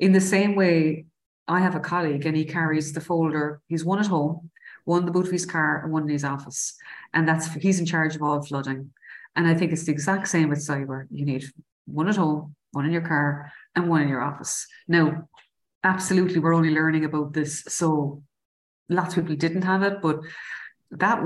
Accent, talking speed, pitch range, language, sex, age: Irish, 215 wpm, 150-175 Hz, English, female, 30-49